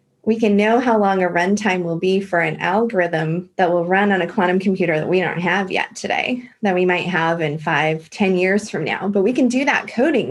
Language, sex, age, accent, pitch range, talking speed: English, female, 20-39, American, 170-210 Hz, 240 wpm